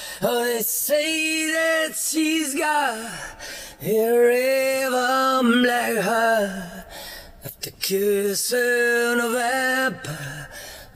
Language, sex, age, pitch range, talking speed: English, male, 30-49, 155-240 Hz, 80 wpm